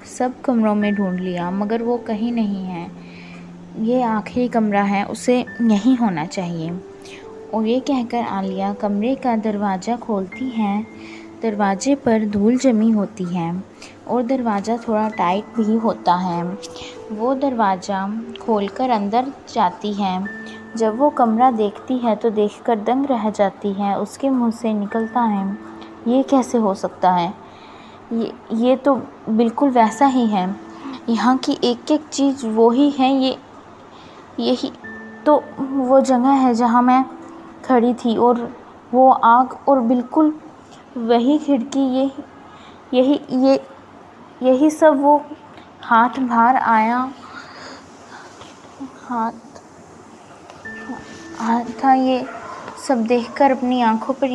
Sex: female